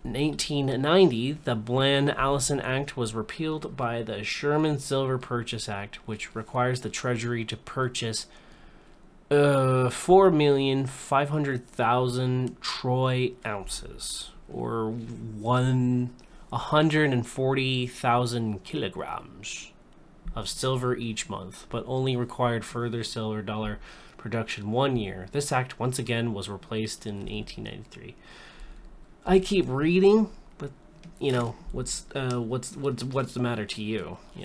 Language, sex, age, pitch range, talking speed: English, male, 20-39, 110-135 Hz, 125 wpm